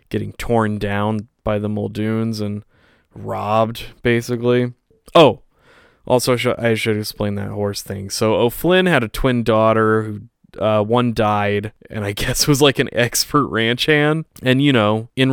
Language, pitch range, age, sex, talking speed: English, 105-120 Hz, 20-39, male, 155 wpm